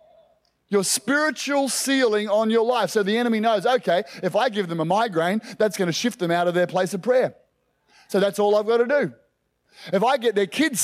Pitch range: 205-260 Hz